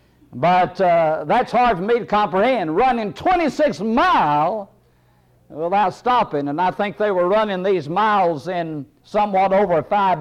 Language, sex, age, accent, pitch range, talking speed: English, male, 60-79, American, 170-245 Hz, 145 wpm